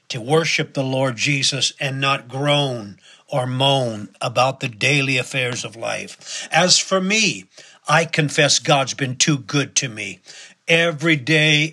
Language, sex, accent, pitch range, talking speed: English, male, American, 130-155 Hz, 150 wpm